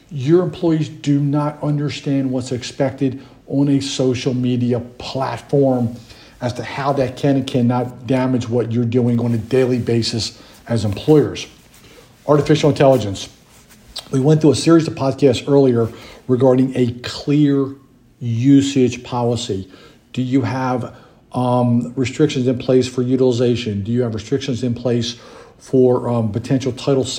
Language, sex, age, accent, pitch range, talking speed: English, male, 50-69, American, 120-135 Hz, 140 wpm